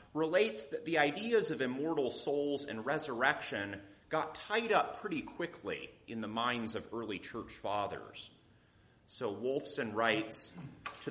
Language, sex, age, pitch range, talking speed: English, male, 30-49, 115-160 Hz, 135 wpm